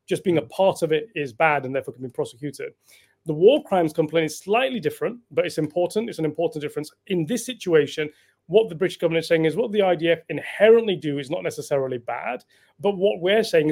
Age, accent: 30-49, British